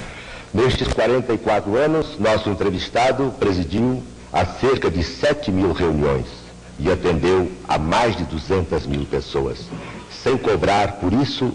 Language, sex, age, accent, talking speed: Portuguese, male, 60-79, Brazilian, 125 wpm